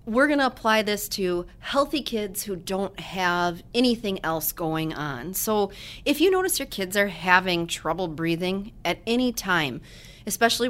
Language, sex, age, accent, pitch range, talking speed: English, female, 30-49, American, 160-200 Hz, 165 wpm